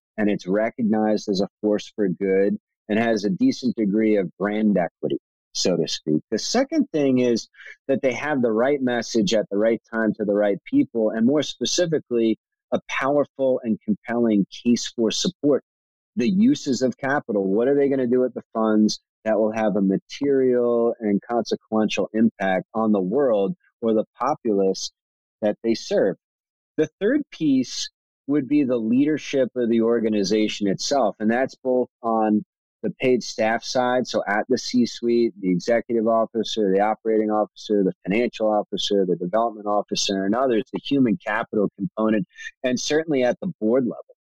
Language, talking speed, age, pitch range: English, 170 wpm, 30-49, 105-130 Hz